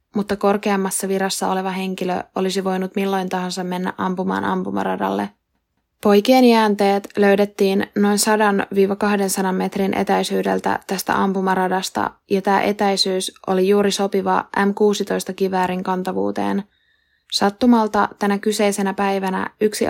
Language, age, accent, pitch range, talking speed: Finnish, 20-39, native, 185-205 Hz, 105 wpm